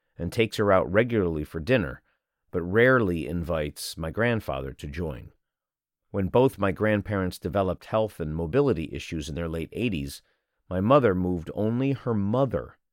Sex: male